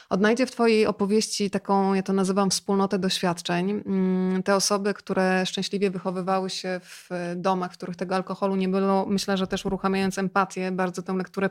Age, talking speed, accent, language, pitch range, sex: 20-39, 165 wpm, native, Polish, 185-205 Hz, female